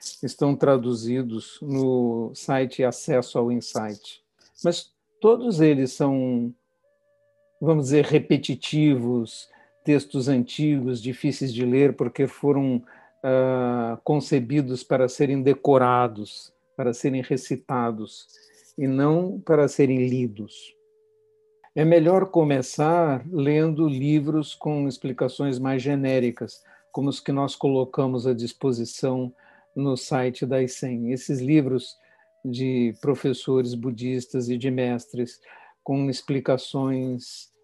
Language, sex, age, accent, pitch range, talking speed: Portuguese, male, 60-79, Brazilian, 125-150 Hz, 100 wpm